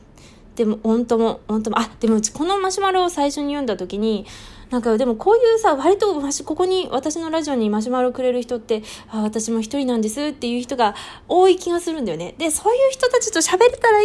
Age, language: 20-39, Japanese